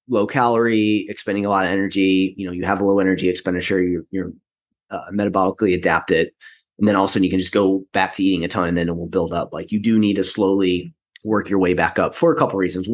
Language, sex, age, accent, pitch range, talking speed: English, male, 20-39, American, 95-115 Hz, 250 wpm